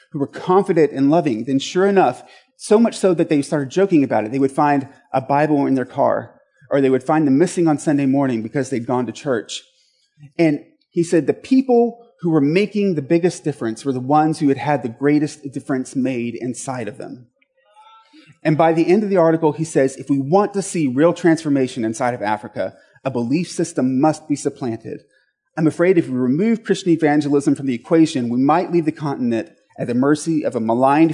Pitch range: 135-190 Hz